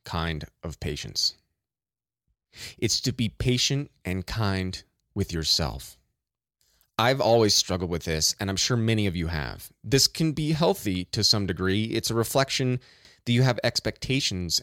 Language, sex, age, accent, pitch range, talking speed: English, male, 30-49, American, 95-130 Hz, 150 wpm